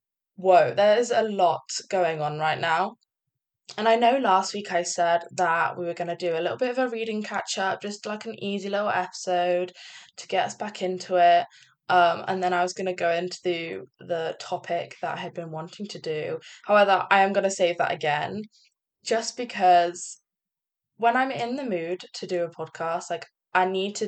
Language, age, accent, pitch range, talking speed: English, 10-29, British, 175-230 Hz, 200 wpm